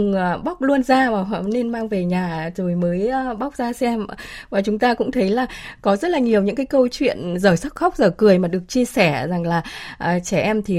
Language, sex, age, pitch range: Vietnamese, female, 20-39, 185-245 Hz